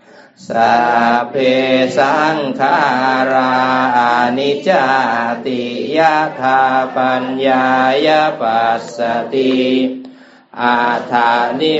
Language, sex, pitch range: English, male, 120-130 Hz